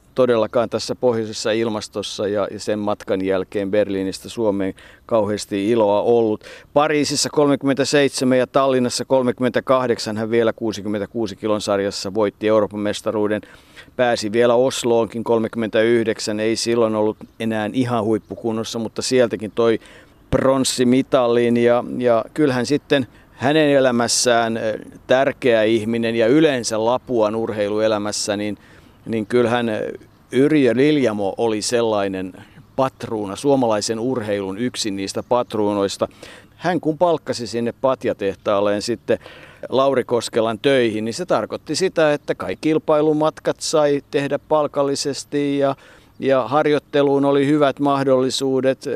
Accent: native